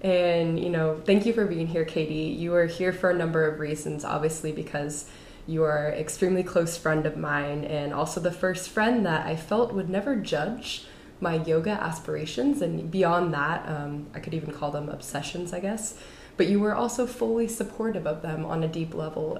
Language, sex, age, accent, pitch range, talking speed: English, female, 20-39, American, 155-185 Hz, 200 wpm